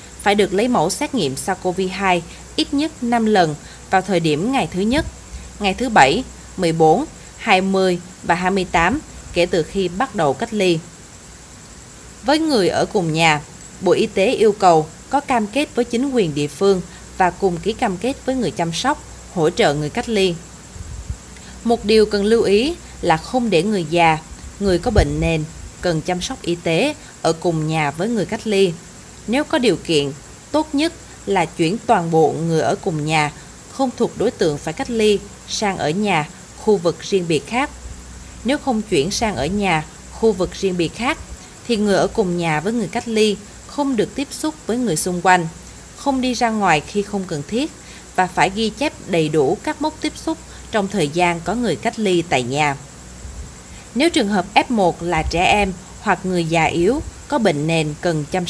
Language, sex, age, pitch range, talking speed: Vietnamese, female, 20-39, 165-230 Hz, 195 wpm